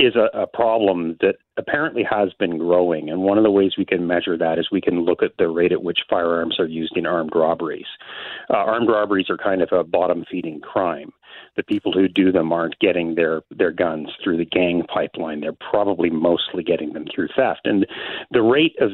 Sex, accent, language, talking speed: male, American, English, 215 wpm